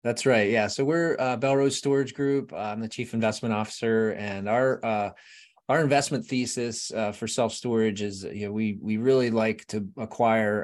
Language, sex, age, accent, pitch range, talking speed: English, male, 30-49, American, 95-110 Hz, 185 wpm